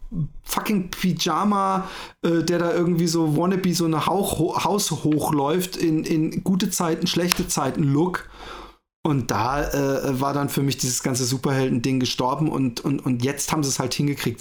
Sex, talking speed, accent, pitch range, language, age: male, 160 wpm, German, 120-160 Hz, German, 40-59